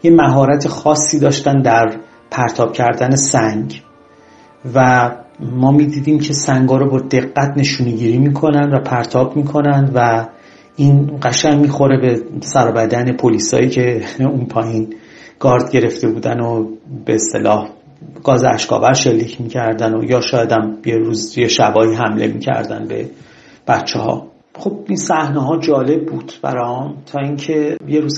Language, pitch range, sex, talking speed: Persian, 115-145 Hz, male, 140 wpm